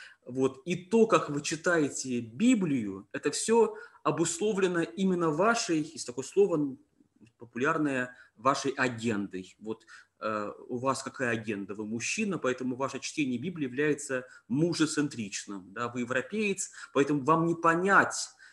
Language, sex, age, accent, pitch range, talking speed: Russian, male, 20-39, native, 125-165 Hz, 125 wpm